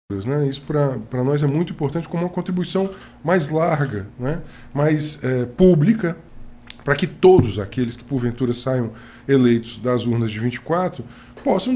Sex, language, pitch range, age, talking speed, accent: male, Portuguese, 125-160 Hz, 20-39, 150 wpm, Brazilian